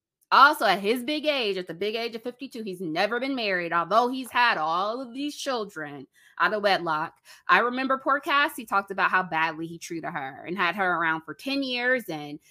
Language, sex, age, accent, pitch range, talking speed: English, female, 20-39, American, 165-240 Hz, 210 wpm